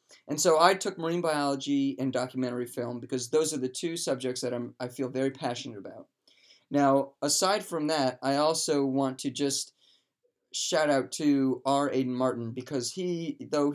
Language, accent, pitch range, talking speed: English, American, 125-155 Hz, 175 wpm